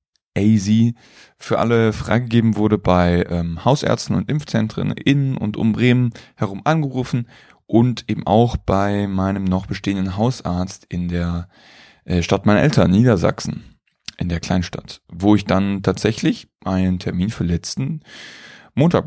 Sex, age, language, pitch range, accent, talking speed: male, 20-39, German, 90-115 Hz, German, 130 wpm